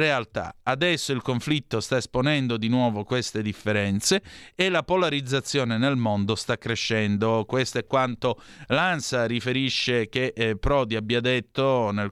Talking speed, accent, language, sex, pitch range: 135 wpm, native, Italian, male, 115-140 Hz